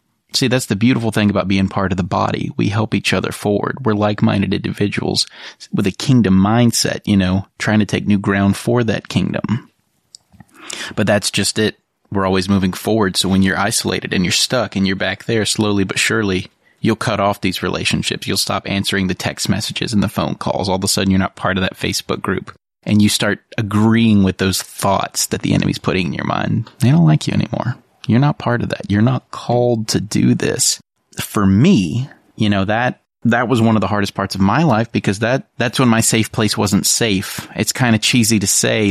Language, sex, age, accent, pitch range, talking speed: English, male, 30-49, American, 95-115 Hz, 215 wpm